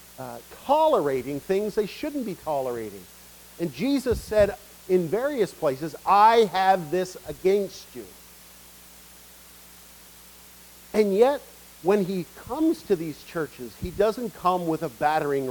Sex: male